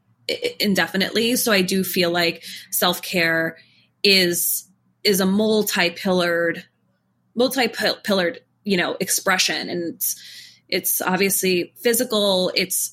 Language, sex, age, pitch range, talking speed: English, female, 20-39, 180-215 Hz, 100 wpm